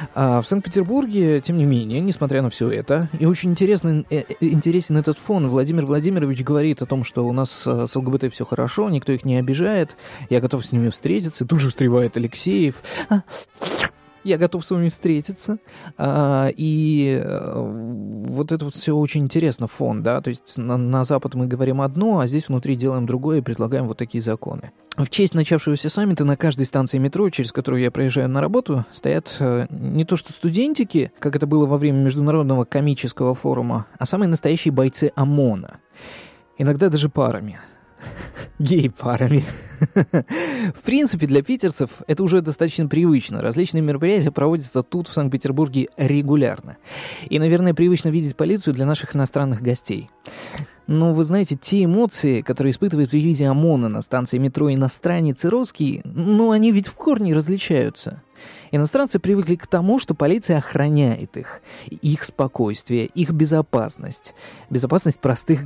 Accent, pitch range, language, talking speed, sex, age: native, 130-170 Hz, Russian, 150 wpm, male, 20-39